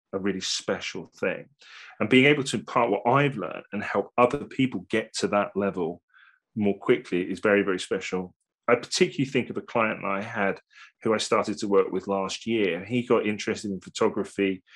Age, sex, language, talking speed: 30-49, male, English, 190 wpm